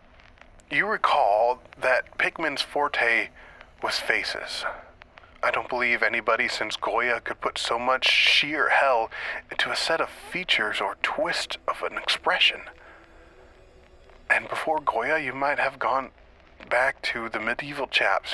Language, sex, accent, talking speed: English, male, American, 135 wpm